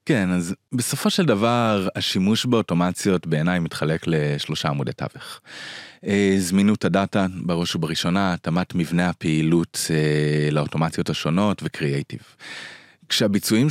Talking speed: 110 wpm